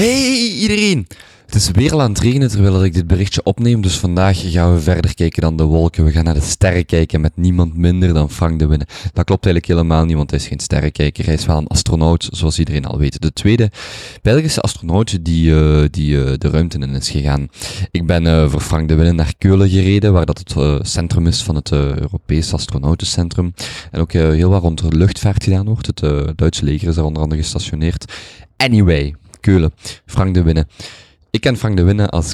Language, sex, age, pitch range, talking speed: Dutch, male, 20-39, 80-100 Hz, 220 wpm